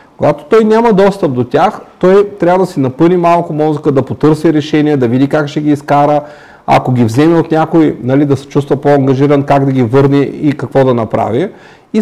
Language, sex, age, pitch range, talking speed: Bulgarian, male, 40-59, 125-175 Hz, 205 wpm